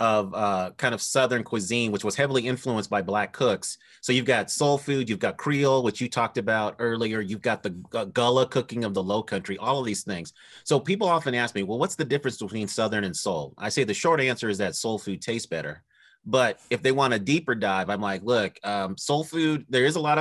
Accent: American